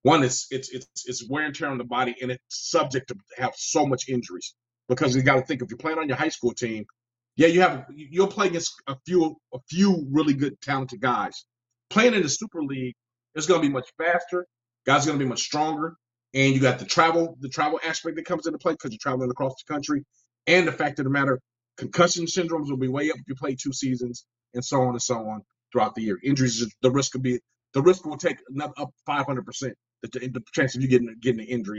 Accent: American